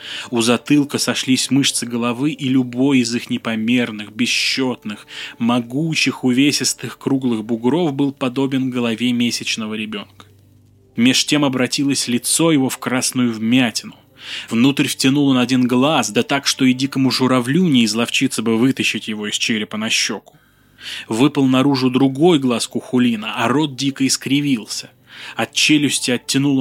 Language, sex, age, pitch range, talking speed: Russian, male, 20-39, 120-140 Hz, 135 wpm